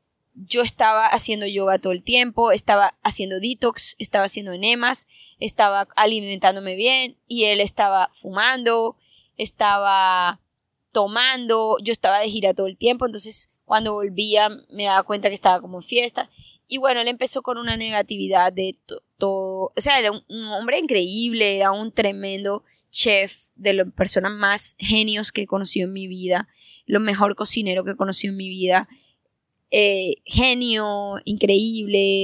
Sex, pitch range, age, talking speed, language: female, 190-235 Hz, 20-39, 155 wpm, Spanish